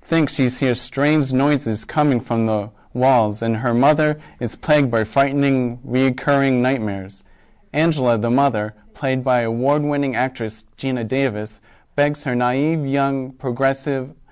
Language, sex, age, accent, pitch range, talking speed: English, male, 40-59, American, 120-145 Hz, 135 wpm